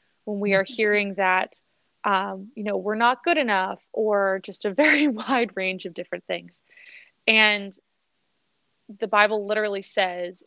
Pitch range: 190-225 Hz